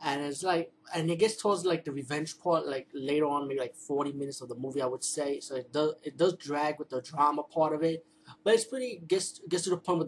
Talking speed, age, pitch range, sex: 270 wpm, 20-39, 130-155 Hz, male